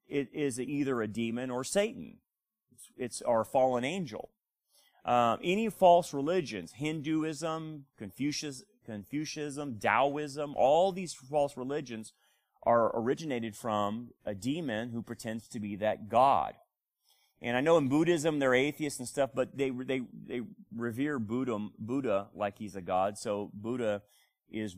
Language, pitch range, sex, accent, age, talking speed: English, 115-155 Hz, male, American, 30-49, 140 wpm